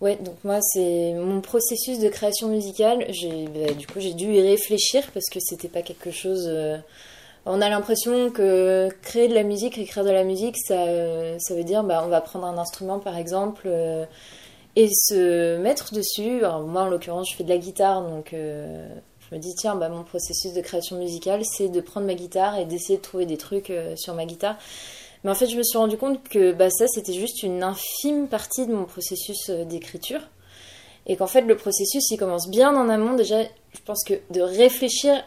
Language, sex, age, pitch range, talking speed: French, female, 20-39, 175-215 Hz, 205 wpm